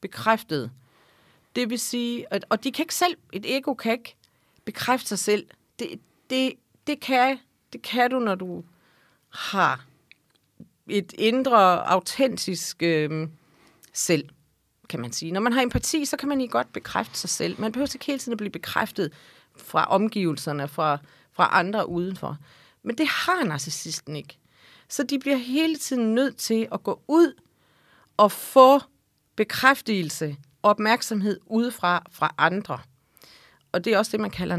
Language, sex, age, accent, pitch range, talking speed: Danish, female, 40-59, native, 170-240 Hz, 155 wpm